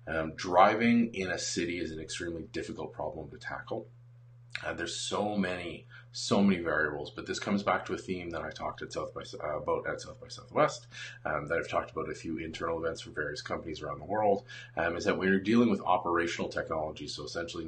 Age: 30-49